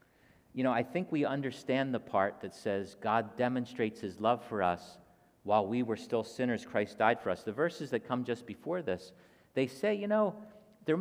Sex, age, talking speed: male, 50-69, 200 wpm